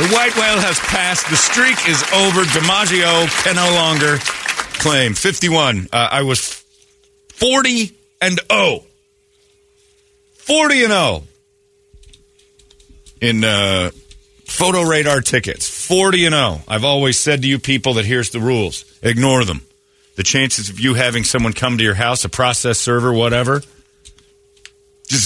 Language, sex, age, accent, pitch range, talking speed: English, male, 40-59, American, 100-170 Hz, 140 wpm